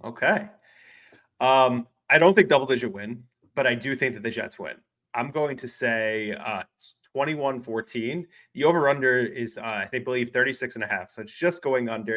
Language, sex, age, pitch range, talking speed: English, male, 30-49, 110-125 Hz, 190 wpm